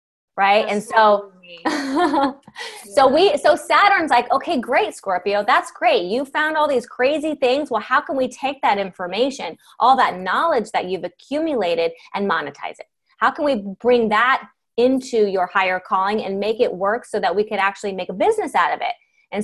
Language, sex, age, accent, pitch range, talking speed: English, female, 20-39, American, 205-295 Hz, 185 wpm